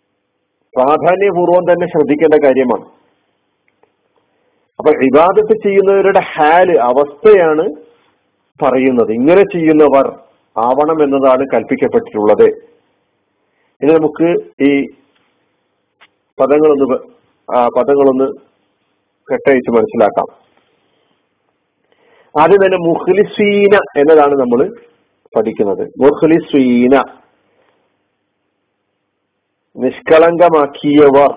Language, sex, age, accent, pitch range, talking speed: Malayalam, male, 50-69, native, 140-180 Hz, 55 wpm